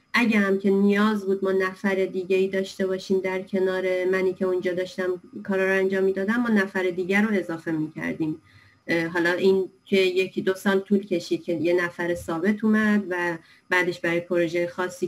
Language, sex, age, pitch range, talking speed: Persian, female, 30-49, 170-195 Hz, 180 wpm